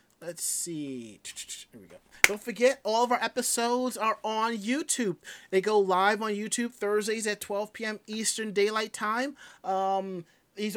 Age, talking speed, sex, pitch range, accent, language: 30-49, 155 wpm, male, 165-215 Hz, American, English